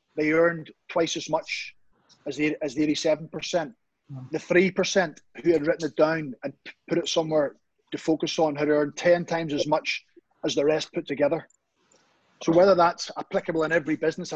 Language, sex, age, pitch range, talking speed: English, male, 30-49, 155-175 Hz, 170 wpm